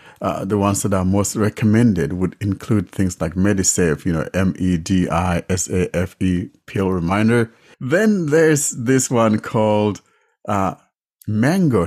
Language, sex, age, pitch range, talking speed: English, male, 60-79, 90-110 Hz, 155 wpm